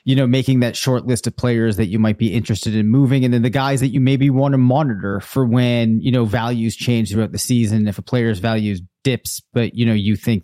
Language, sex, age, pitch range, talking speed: English, male, 30-49, 110-135 Hz, 255 wpm